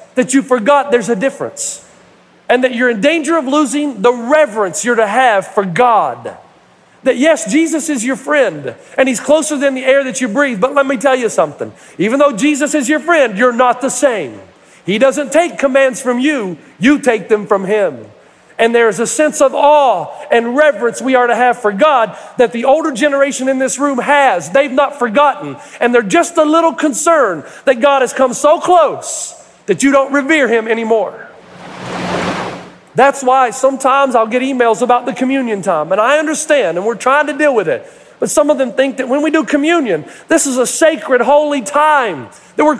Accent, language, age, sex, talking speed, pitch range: American, English, 40-59, male, 200 wpm, 250-295 Hz